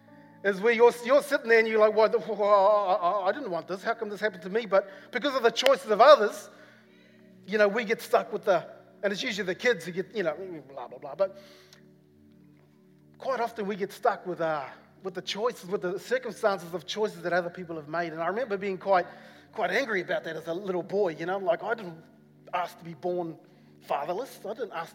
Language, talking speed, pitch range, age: English, 225 wpm, 180-235 Hz, 30-49